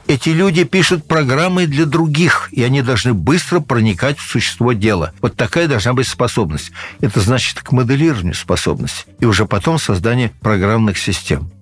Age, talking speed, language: 60-79, 155 wpm, Russian